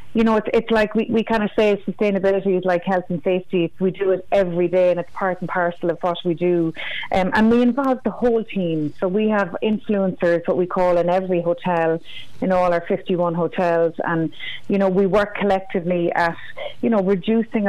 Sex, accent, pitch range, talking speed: female, Irish, 175-195 Hz, 210 wpm